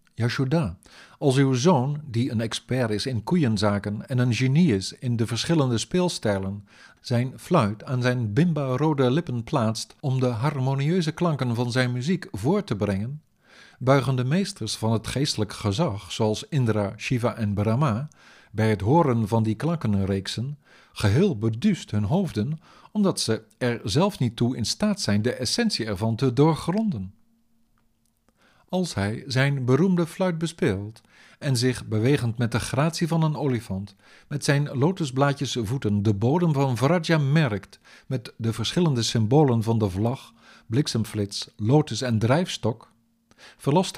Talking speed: 145 wpm